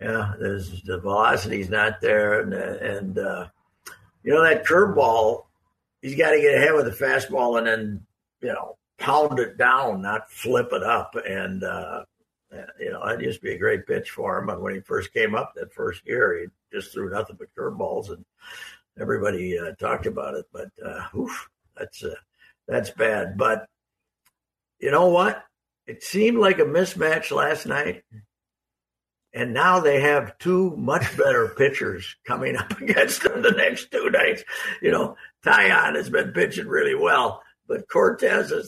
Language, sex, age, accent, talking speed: English, male, 60-79, American, 170 wpm